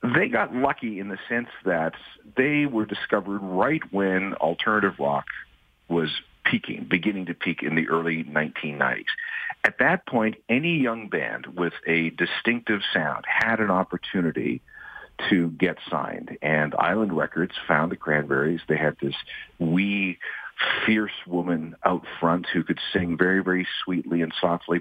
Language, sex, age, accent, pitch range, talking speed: English, male, 50-69, American, 80-105 Hz, 150 wpm